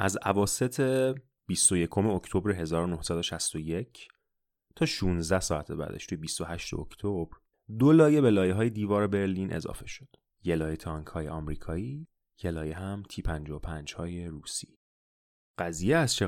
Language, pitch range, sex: Persian, 80-115 Hz, male